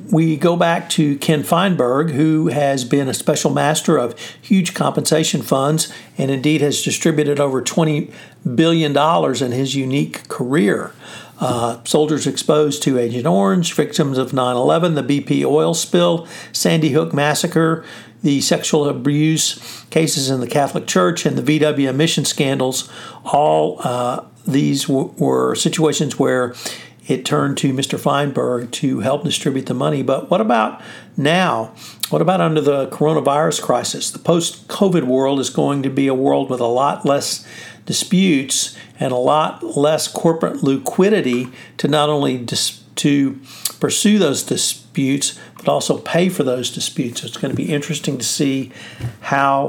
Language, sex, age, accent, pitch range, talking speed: English, male, 60-79, American, 135-160 Hz, 150 wpm